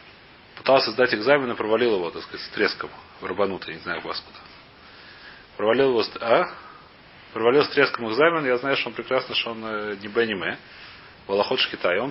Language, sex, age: Russian, male, 30-49